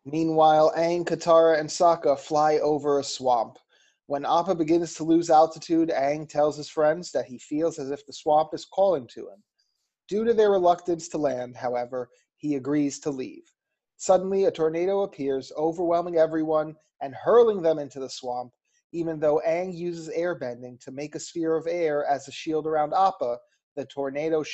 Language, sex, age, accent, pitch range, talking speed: English, male, 30-49, American, 140-170 Hz, 175 wpm